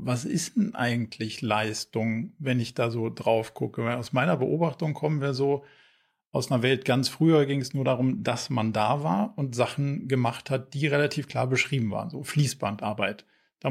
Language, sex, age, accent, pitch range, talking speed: German, male, 40-59, German, 125-150 Hz, 185 wpm